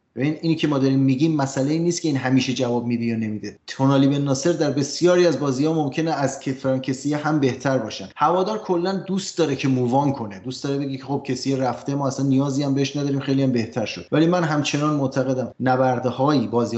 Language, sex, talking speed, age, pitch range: Persian, male, 220 wpm, 20-39, 120-150 Hz